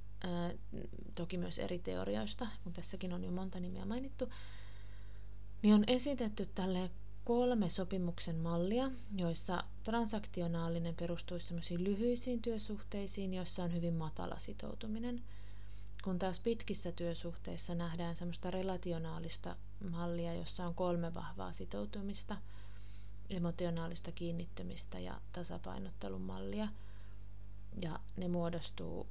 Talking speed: 100 wpm